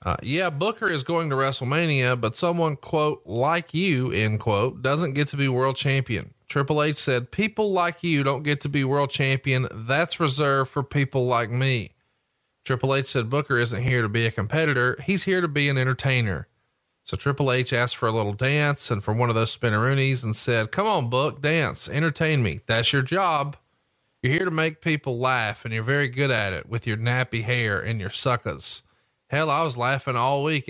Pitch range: 115-145 Hz